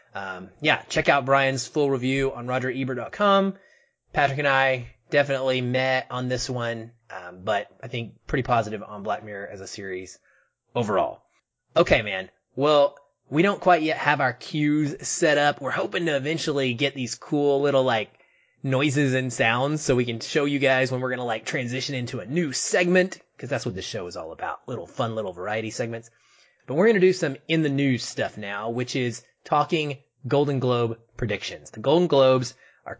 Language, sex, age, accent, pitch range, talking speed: English, male, 20-39, American, 120-150 Hz, 185 wpm